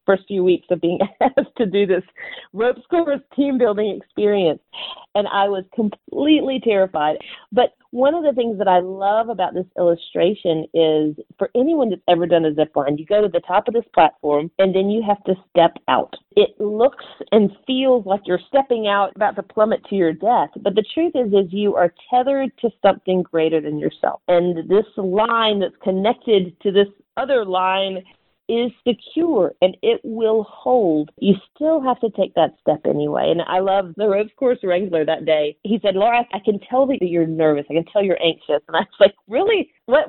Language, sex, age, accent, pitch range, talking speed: English, female, 40-59, American, 180-250 Hz, 200 wpm